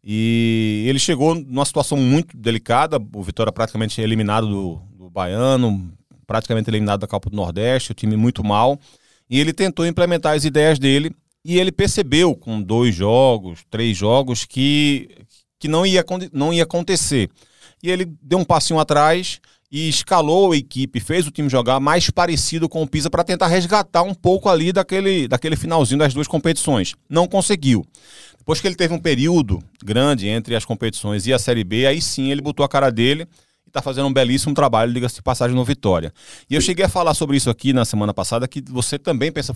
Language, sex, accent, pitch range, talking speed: Portuguese, male, Brazilian, 115-165 Hz, 190 wpm